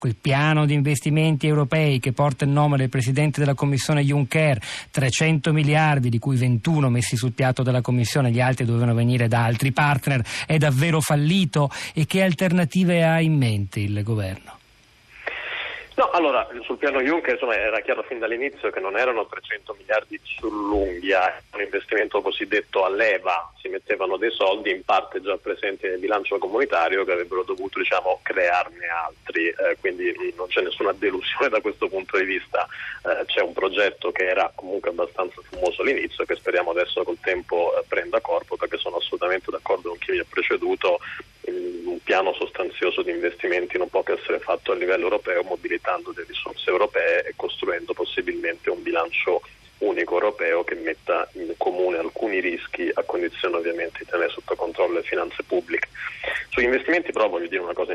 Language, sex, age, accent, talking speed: Italian, male, 40-59, native, 170 wpm